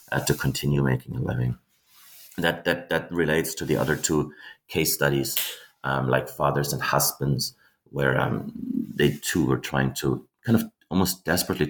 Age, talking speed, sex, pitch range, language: 30-49, 165 wpm, male, 70-85 Hz, English